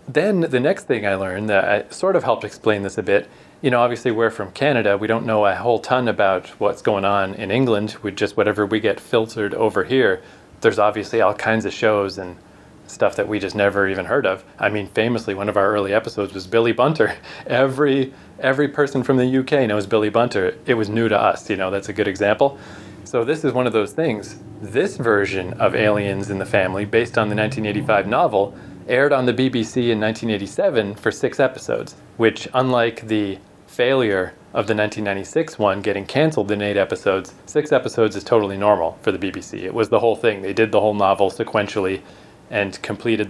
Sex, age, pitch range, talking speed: male, 30-49, 100-125 Hz, 205 wpm